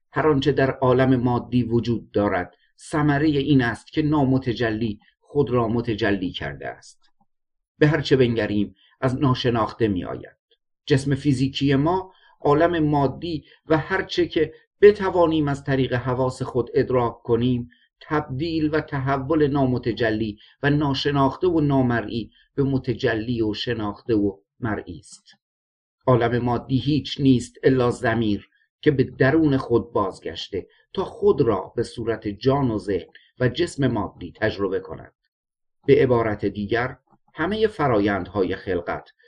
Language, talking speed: Persian, 125 wpm